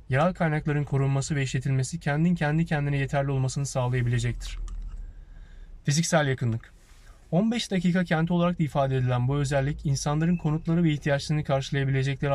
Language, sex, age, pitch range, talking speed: Turkish, male, 30-49, 125-155 Hz, 130 wpm